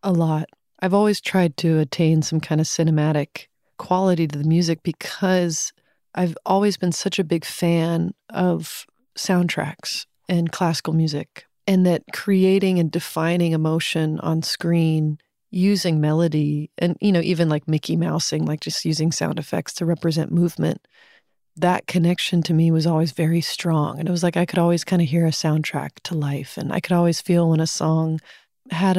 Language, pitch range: English, 160-180 Hz